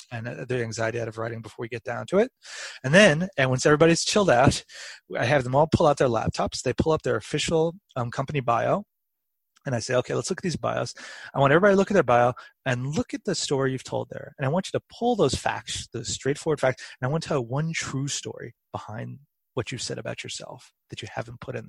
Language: English